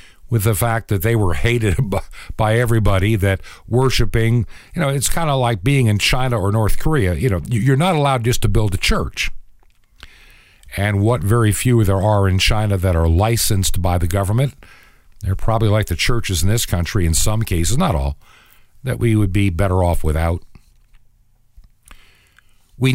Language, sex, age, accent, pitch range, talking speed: English, male, 50-69, American, 95-130 Hz, 180 wpm